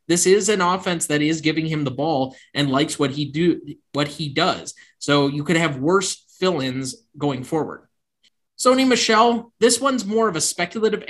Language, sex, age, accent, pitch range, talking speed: English, male, 20-39, American, 140-180 Hz, 185 wpm